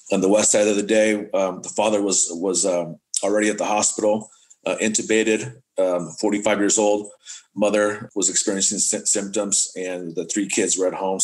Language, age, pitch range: English, 30-49, 95-110 Hz